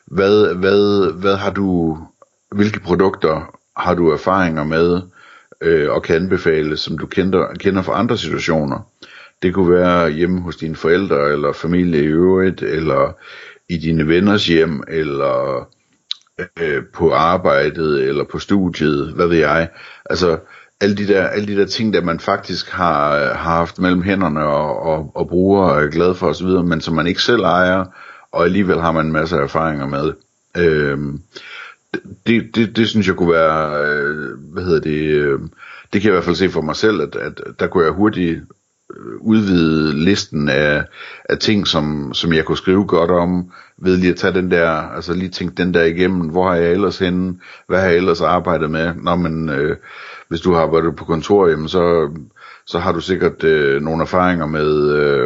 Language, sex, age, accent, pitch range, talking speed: Danish, male, 60-79, native, 80-95 Hz, 185 wpm